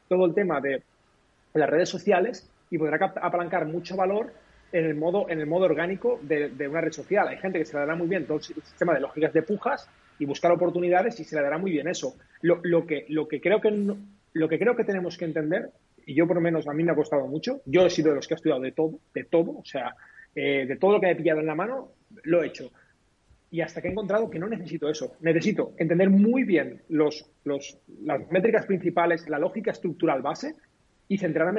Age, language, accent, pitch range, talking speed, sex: 30-49, Spanish, Spanish, 155-195 Hz, 235 wpm, male